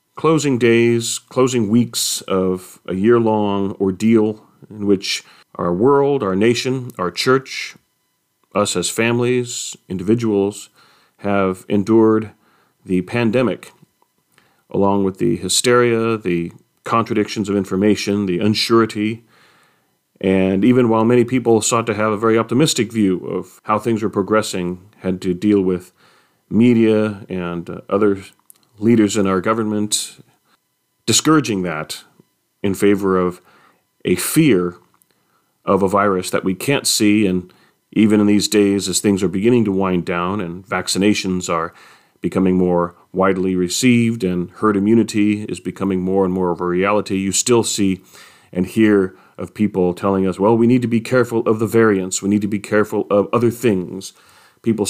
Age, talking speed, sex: 40-59, 145 wpm, male